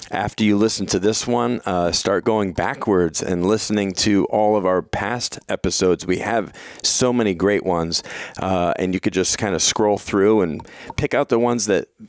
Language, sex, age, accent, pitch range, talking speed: English, male, 40-59, American, 95-120 Hz, 195 wpm